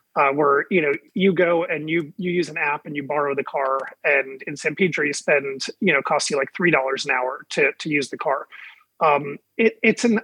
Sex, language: male, English